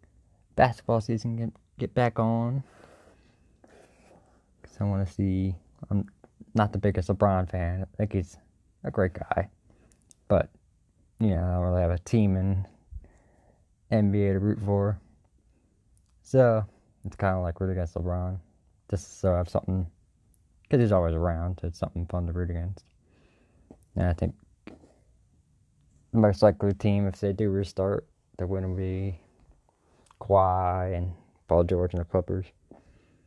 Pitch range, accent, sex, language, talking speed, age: 90-100 Hz, American, male, English, 150 wpm, 20-39